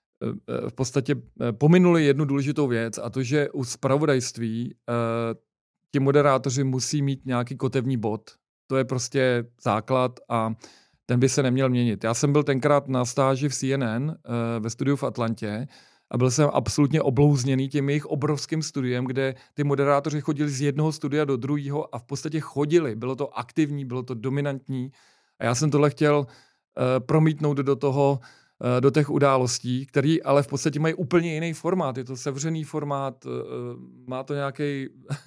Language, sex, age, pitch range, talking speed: Czech, male, 40-59, 125-150 Hz, 165 wpm